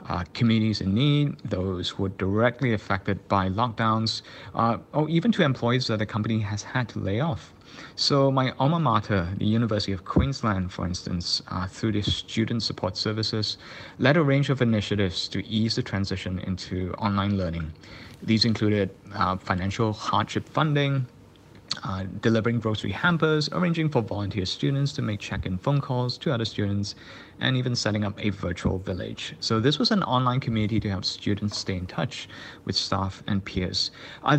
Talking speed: 170 wpm